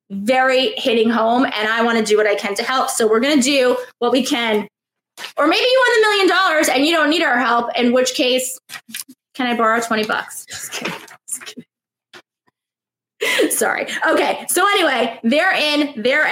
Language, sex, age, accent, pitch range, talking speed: English, female, 20-39, American, 235-305 Hz, 195 wpm